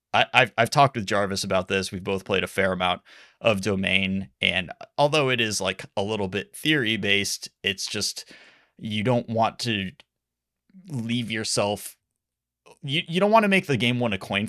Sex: male